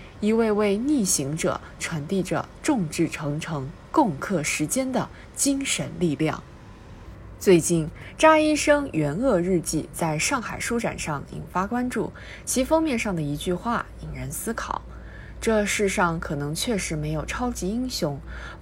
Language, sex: Chinese, female